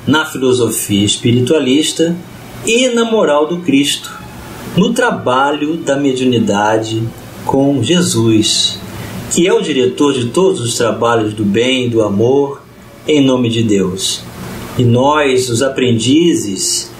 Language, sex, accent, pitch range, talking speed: Portuguese, male, Brazilian, 115-150 Hz, 125 wpm